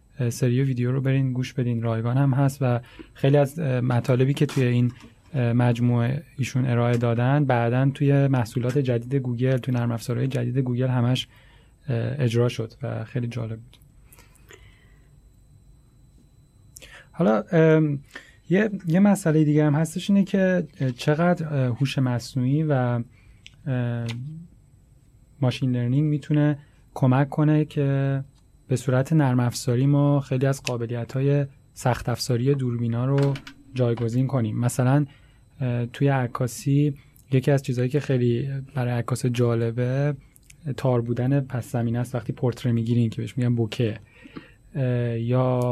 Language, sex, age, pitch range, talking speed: Persian, male, 30-49, 120-140 Hz, 125 wpm